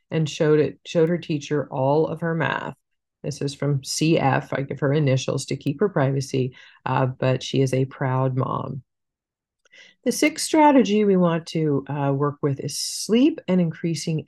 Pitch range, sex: 140-195 Hz, female